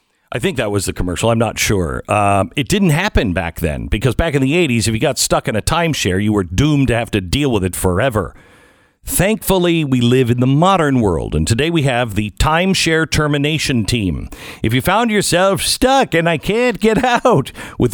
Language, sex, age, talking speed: English, male, 50-69, 210 wpm